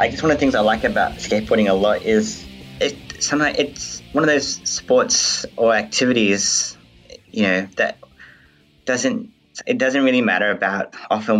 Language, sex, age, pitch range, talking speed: English, male, 20-39, 95-110 Hz, 170 wpm